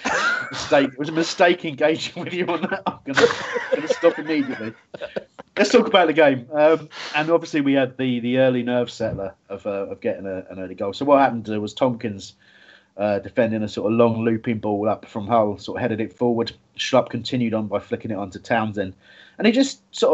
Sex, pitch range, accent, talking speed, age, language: male, 105-145 Hz, British, 210 wpm, 30-49, English